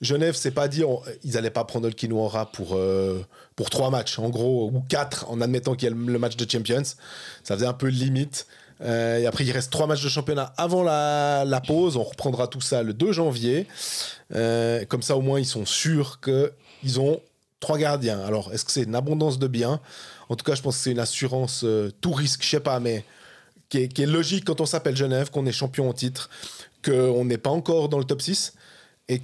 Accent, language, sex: French, French, male